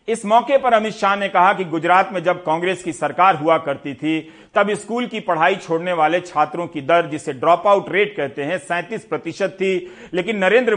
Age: 40-59